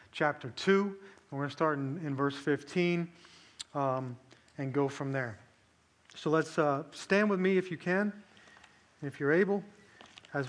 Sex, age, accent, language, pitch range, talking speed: male, 30-49, American, English, 145-180 Hz, 165 wpm